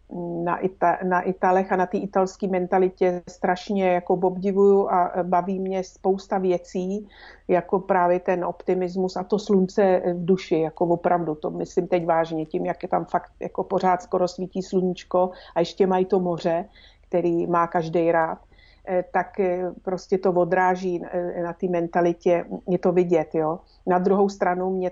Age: 50-69